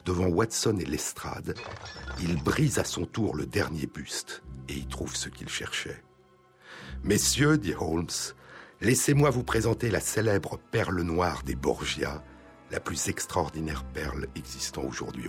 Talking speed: 140 wpm